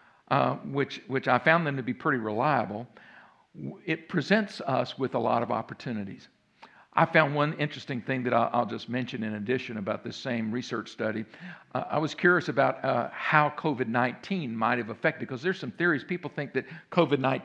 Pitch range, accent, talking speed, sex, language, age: 130-200 Hz, American, 185 wpm, male, English, 50-69